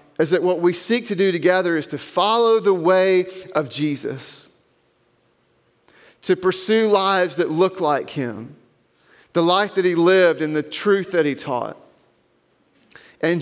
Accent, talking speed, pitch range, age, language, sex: American, 150 wpm, 130-185 Hz, 40-59, English, male